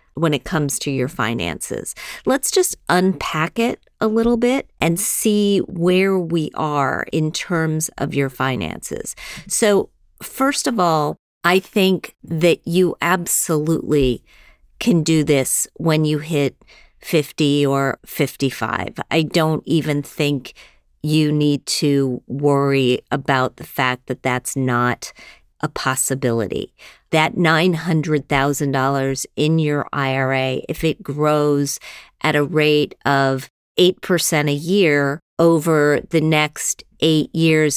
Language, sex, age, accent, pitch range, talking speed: English, female, 50-69, American, 140-165 Hz, 120 wpm